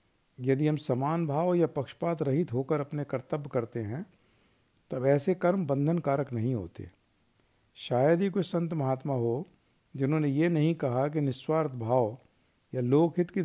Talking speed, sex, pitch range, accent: 155 wpm, male, 125-165 Hz, native